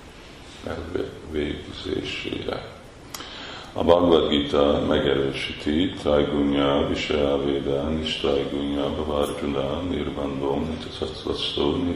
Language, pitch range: Hungarian, 70-75 Hz